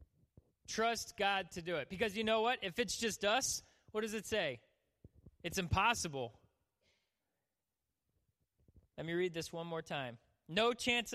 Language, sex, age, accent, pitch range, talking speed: English, male, 30-49, American, 150-210 Hz, 150 wpm